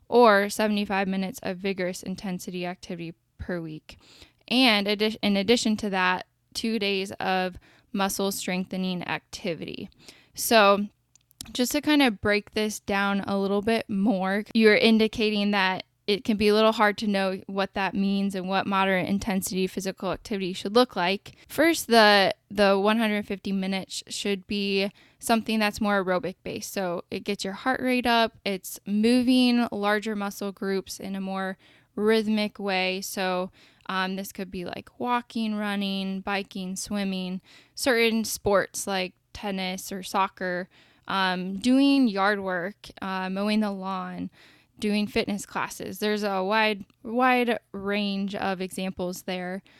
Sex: female